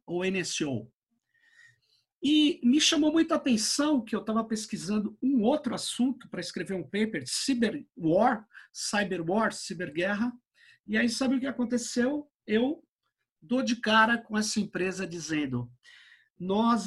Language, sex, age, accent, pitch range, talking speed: Portuguese, male, 50-69, Brazilian, 180-255 Hz, 135 wpm